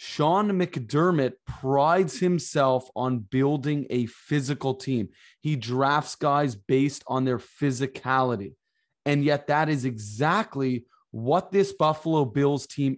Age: 20-39